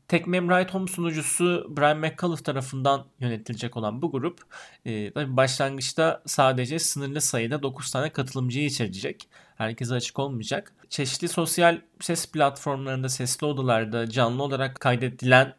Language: Turkish